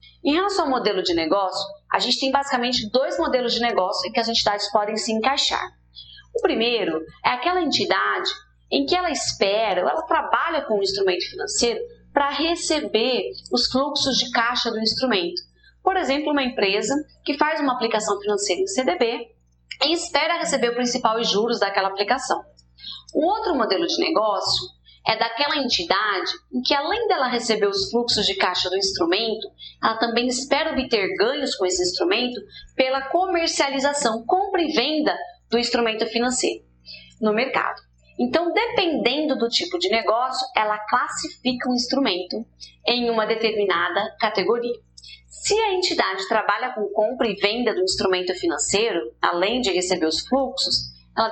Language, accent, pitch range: Portuguese, Brazilian, 195-280 Hz